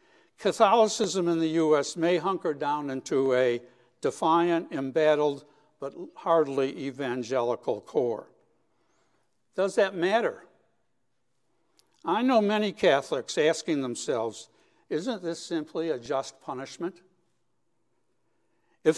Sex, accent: male, American